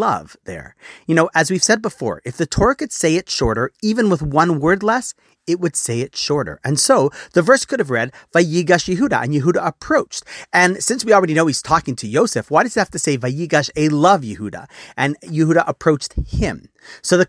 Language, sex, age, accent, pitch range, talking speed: English, male, 40-59, American, 125-185 Hz, 215 wpm